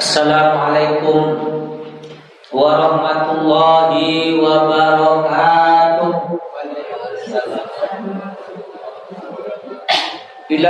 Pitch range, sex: 165-200 Hz, male